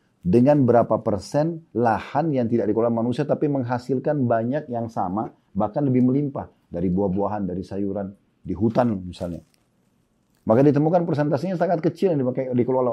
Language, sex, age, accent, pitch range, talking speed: Indonesian, male, 40-59, native, 105-130 Hz, 140 wpm